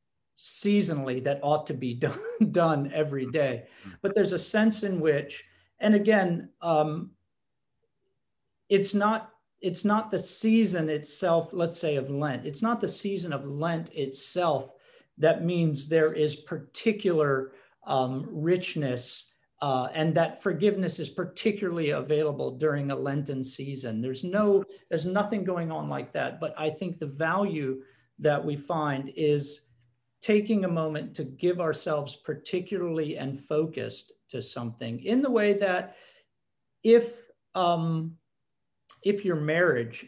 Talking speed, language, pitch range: 135 wpm, English, 135-180 Hz